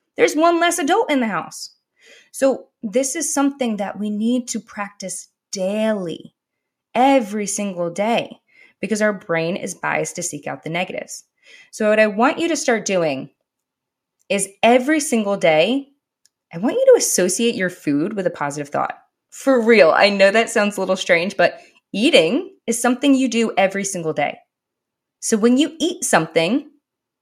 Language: English